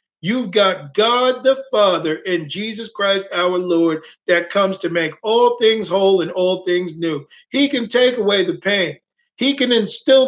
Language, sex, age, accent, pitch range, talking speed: English, male, 50-69, American, 175-225 Hz, 175 wpm